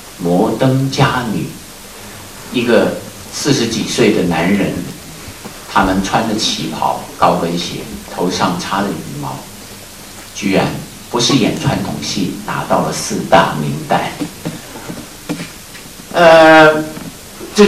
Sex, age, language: male, 50-69, Chinese